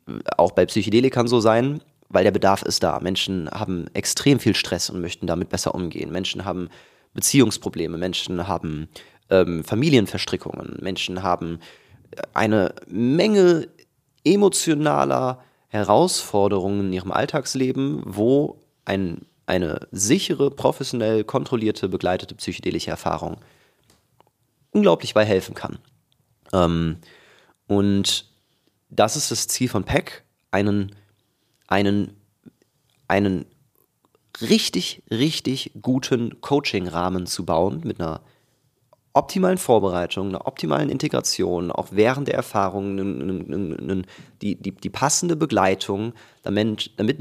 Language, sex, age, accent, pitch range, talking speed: German, male, 30-49, German, 95-130 Hz, 110 wpm